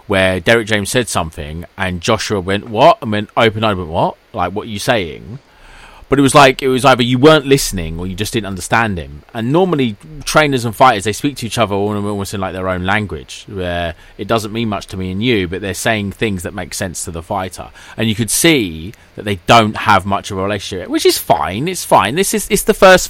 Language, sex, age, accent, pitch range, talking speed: English, male, 30-49, British, 90-115 Hz, 240 wpm